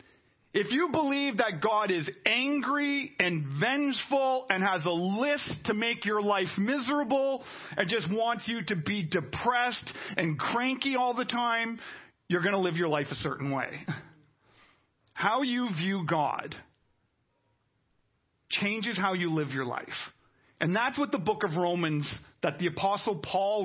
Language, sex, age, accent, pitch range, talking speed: English, male, 40-59, American, 175-235 Hz, 150 wpm